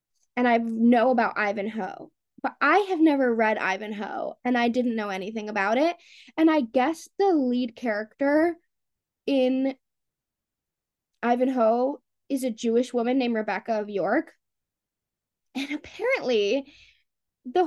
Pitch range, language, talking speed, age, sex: 235-305 Hz, English, 125 wpm, 10-29, female